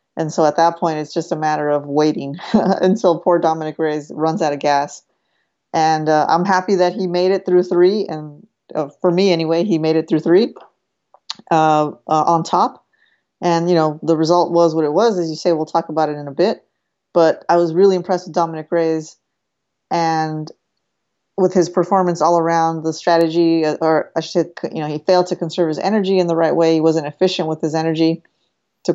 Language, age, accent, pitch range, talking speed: English, 30-49, American, 155-175 Hz, 210 wpm